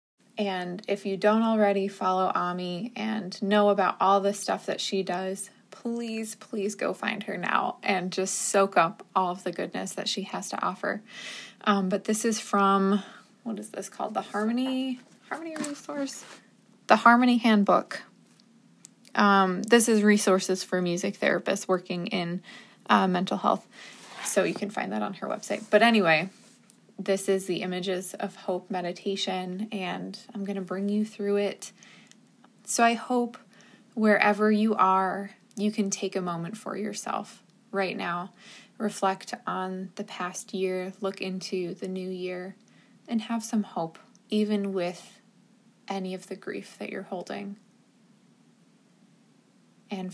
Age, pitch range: 20-39, 190-220 Hz